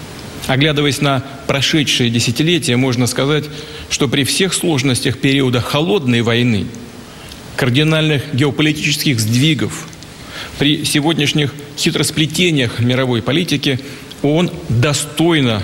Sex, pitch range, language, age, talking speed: male, 125-150 Hz, Russian, 40-59, 90 wpm